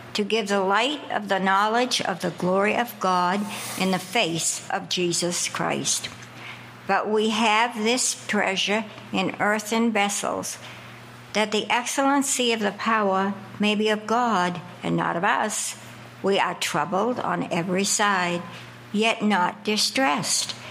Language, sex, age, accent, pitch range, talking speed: English, male, 60-79, American, 190-230 Hz, 140 wpm